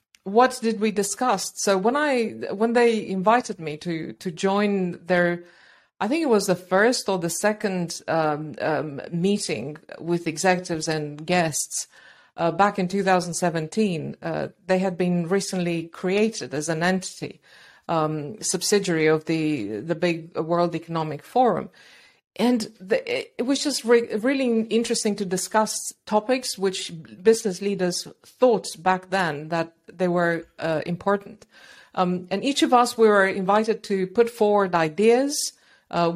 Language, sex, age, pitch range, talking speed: English, female, 50-69, 175-220 Hz, 145 wpm